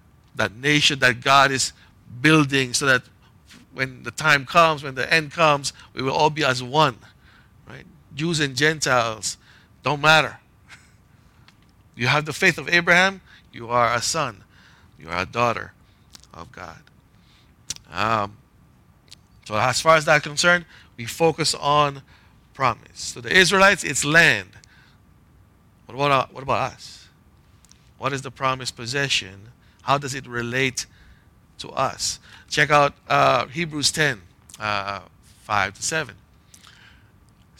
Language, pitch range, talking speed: English, 110-150 Hz, 135 wpm